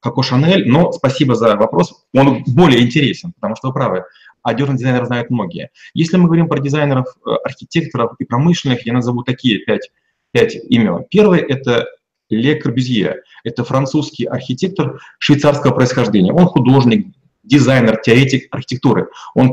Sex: male